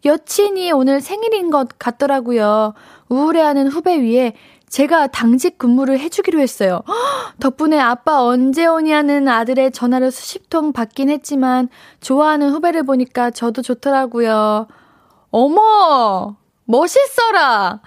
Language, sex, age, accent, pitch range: Korean, female, 20-39, native, 240-315 Hz